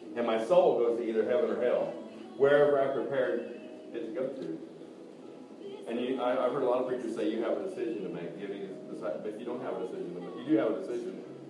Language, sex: English, male